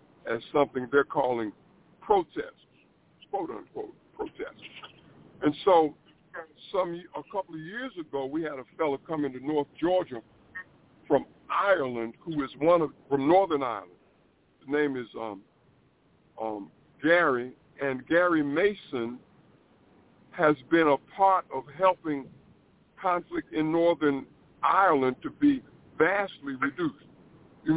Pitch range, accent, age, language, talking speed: 140-185 Hz, American, 50-69, English, 120 wpm